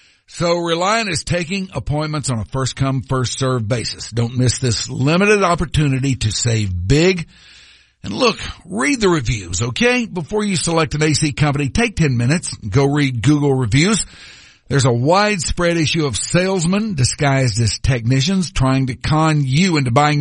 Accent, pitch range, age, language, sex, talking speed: American, 130-165 Hz, 60-79, English, male, 155 wpm